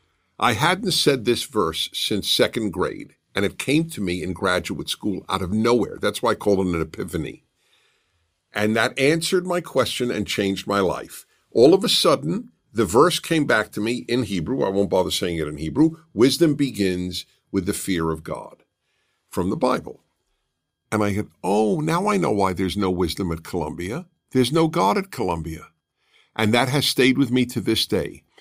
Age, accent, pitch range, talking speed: 50-69, American, 90-130 Hz, 190 wpm